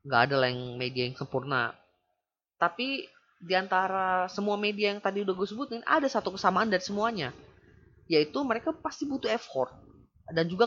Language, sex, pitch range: Indonesian, female, 150-225 Hz